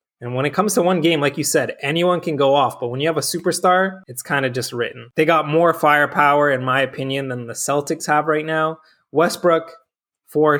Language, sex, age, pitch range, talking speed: English, male, 20-39, 135-160 Hz, 225 wpm